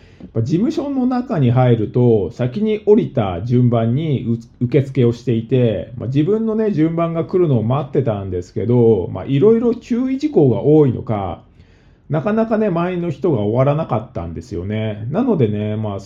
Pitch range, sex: 115-160 Hz, male